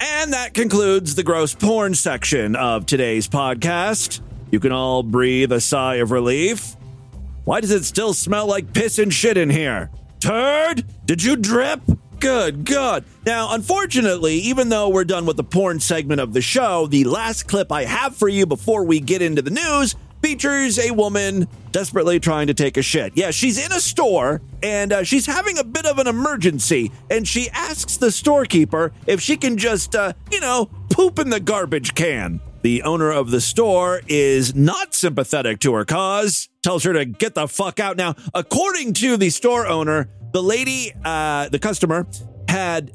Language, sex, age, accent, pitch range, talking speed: English, male, 30-49, American, 145-240 Hz, 185 wpm